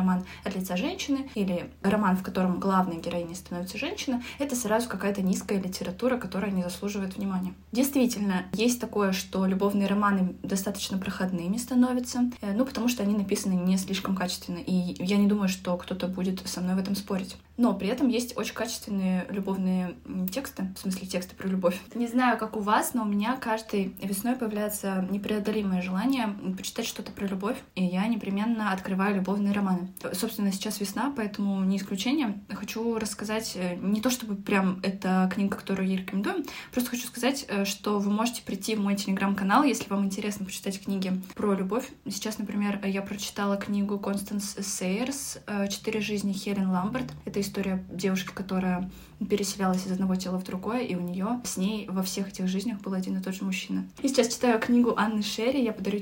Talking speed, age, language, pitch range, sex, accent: 175 wpm, 20-39, Russian, 190-220 Hz, female, native